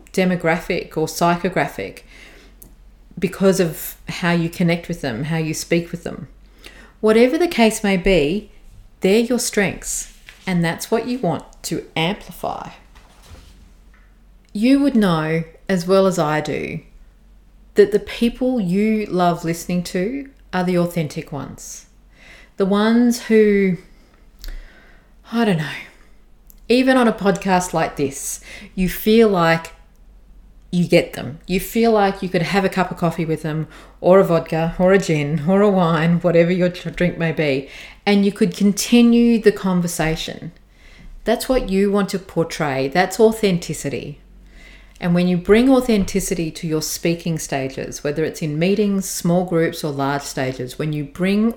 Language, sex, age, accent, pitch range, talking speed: English, female, 40-59, Australian, 160-200 Hz, 150 wpm